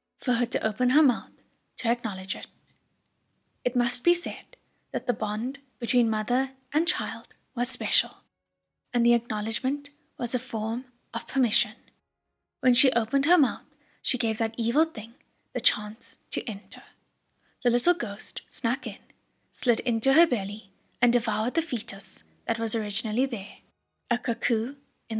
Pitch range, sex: 220-260 Hz, female